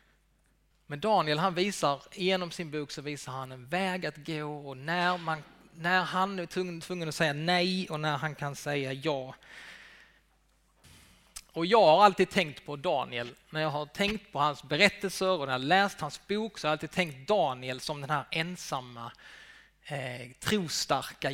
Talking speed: 180 wpm